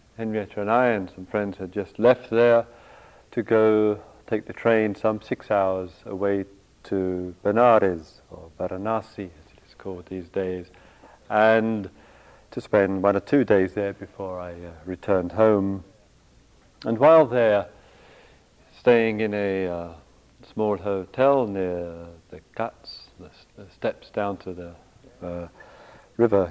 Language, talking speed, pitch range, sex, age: English, 145 wpm, 95-115 Hz, male, 50-69